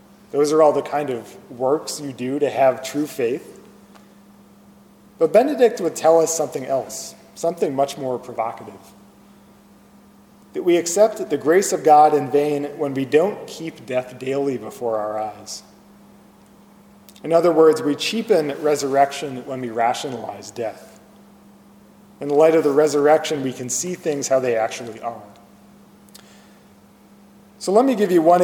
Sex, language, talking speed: male, English, 150 wpm